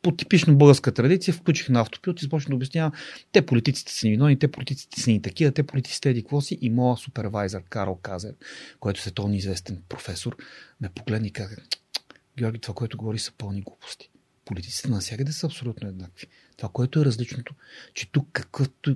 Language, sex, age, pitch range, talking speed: Bulgarian, male, 40-59, 110-135 Hz, 190 wpm